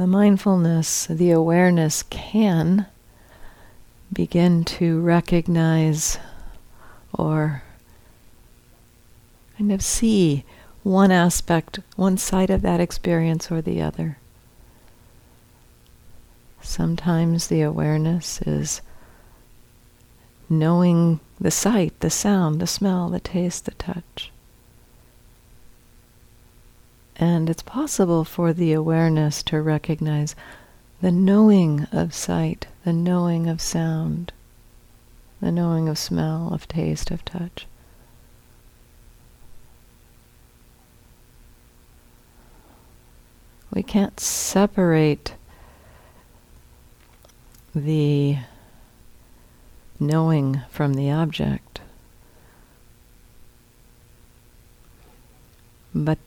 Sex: female